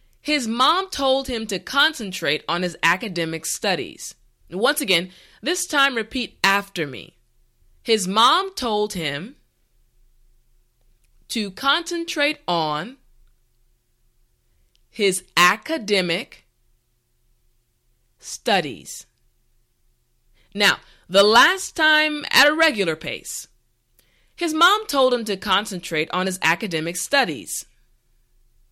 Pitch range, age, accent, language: 165-260 Hz, 20-39, American, English